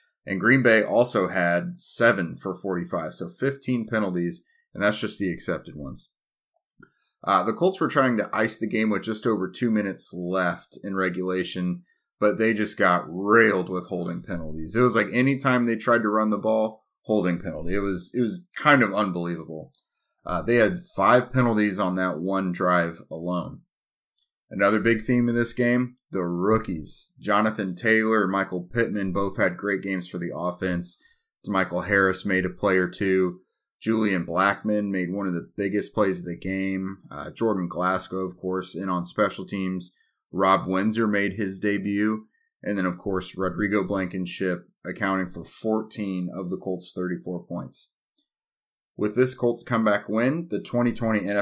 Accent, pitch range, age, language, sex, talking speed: American, 90-110 Hz, 30-49, English, male, 170 wpm